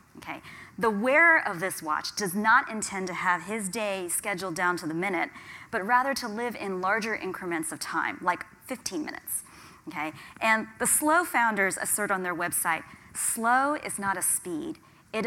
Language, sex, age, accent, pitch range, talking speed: English, female, 30-49, American, 175-235 Hz, 175 wpm